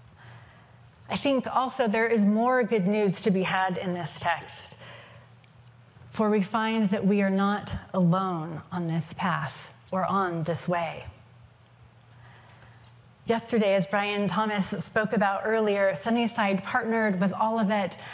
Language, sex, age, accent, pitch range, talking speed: English, female, 30-49, American, 170-220 Hz, 130 wpm